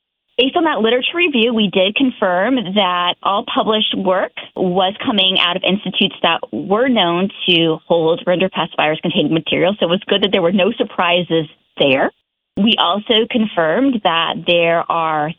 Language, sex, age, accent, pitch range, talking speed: English, female, 30-49, American, 185-245 Hz, 165 wpm